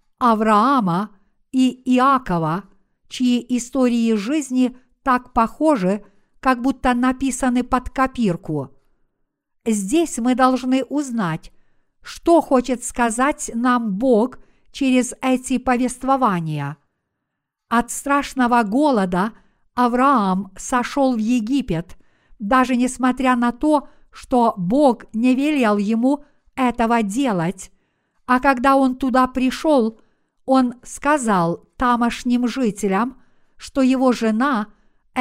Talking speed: 95 wpm